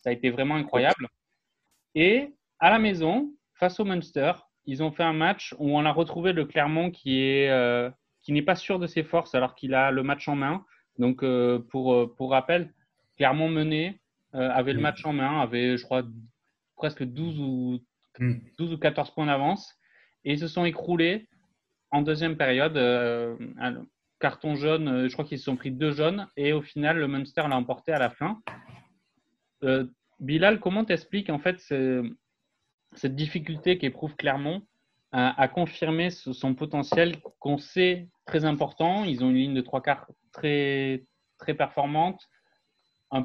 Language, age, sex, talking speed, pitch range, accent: French, 30-49, male, 175 wpm, 130-165 Hz, French